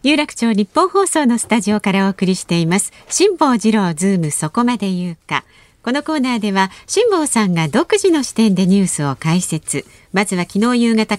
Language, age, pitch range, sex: Japanese, 40-59, 175-260 Hz, female